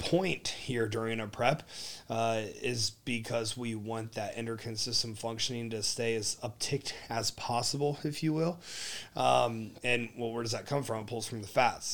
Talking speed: 180 wpm